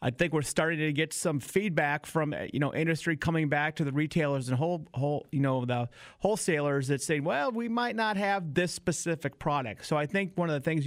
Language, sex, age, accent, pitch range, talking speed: English, male, 30-49, American, 135-165 Hz, 225 wpm